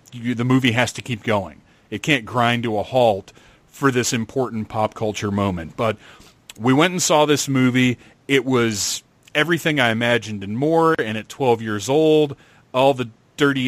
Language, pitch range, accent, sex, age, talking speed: English, 110-135 Hz, American, male, 40-59, 175 wpm